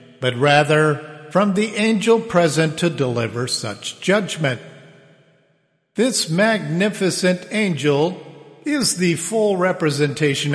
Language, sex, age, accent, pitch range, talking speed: English, male, 50-69, American, 135-175 Hz, 95 wpm